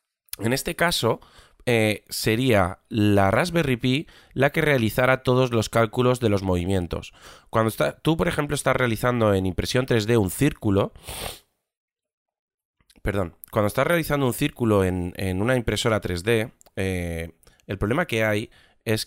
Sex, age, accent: male, 20-39, Spanish